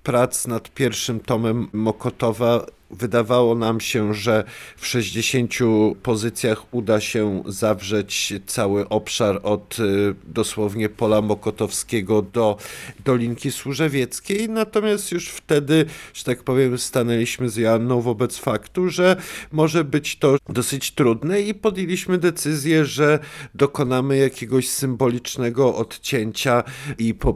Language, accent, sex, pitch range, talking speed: Polish, native, male, 110-135 Hz, 110 wpm